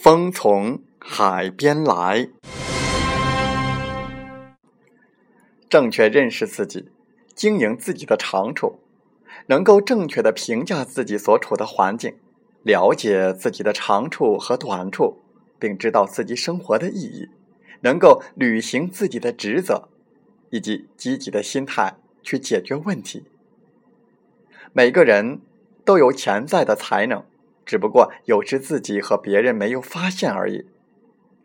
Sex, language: male, Chinese